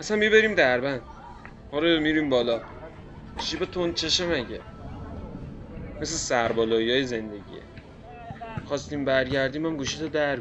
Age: 30-49